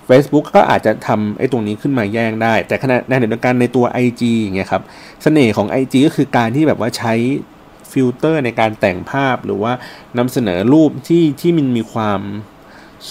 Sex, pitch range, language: male, 110-145 Hz, Thai